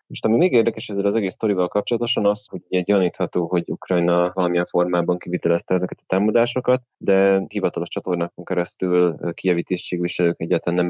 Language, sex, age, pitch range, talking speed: Hungarian, male, 20-39, 90-95 Hz, 155 wpm